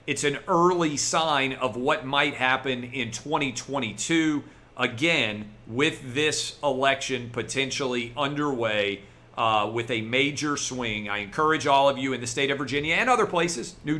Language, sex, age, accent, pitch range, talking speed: English, male, 40-59, American, 125-160 Hz, 150 wpm